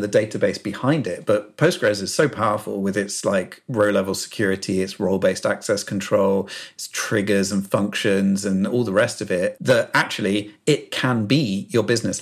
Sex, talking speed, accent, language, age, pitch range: male, 170 wpm, British, English, 40-59, 100-125 Hz